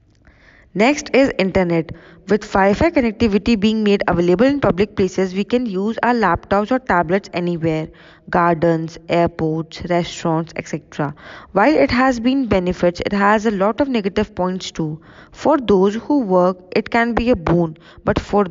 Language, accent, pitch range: English, Indian, 175-235 Hz